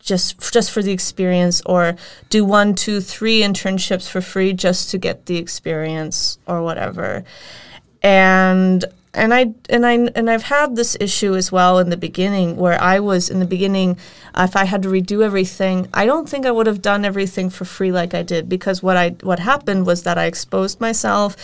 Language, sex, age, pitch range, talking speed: English, female, 30-49, 175-195 Hz, 200 wpm